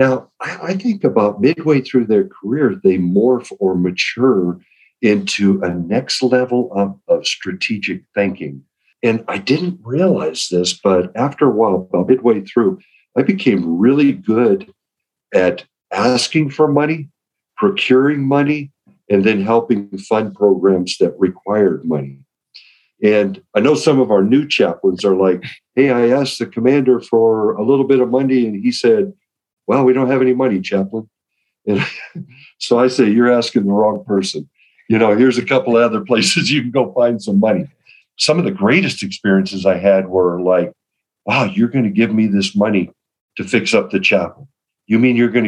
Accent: American